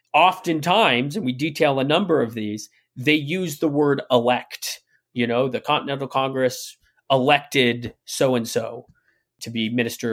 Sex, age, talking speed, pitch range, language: male, 30-49, 150 wpm, 120-160 Hz, English